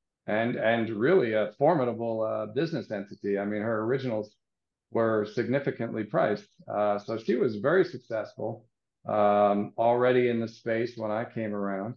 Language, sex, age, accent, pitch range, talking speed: English, male, 50-69, American, 110-130 Hz, 150 wpm